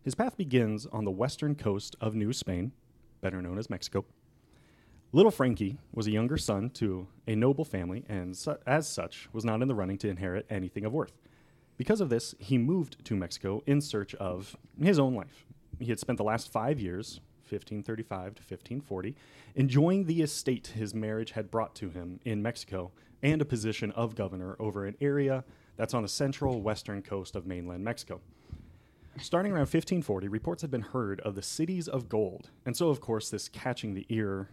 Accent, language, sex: American, English, male